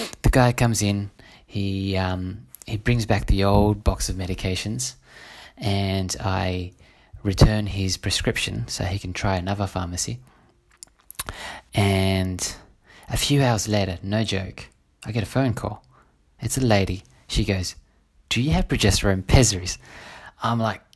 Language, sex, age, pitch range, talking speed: English, male, 20-39, 95-125 Hz, 135 wpm